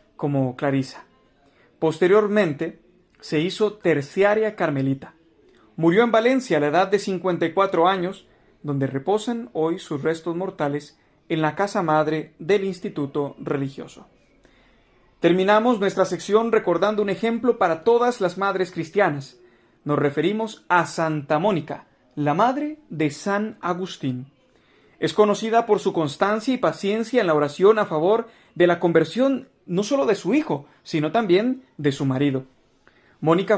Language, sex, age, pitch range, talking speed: Spanish, male, 40-59, 150-205 Hz, 135 wpm